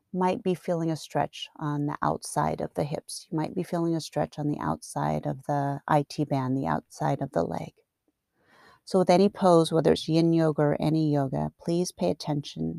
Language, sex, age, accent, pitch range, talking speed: English, female, 30-49, American, 150-185 Hz, 200 wpm